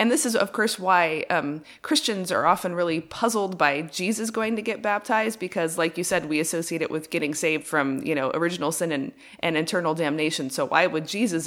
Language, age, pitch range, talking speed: English, 30-49, 160-195 Hz, 215 wpm